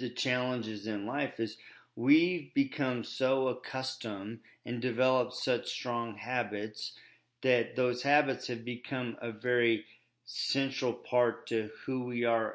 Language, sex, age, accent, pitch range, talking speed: English, male, 40-59, American, 115-130 Hz, 130 wpm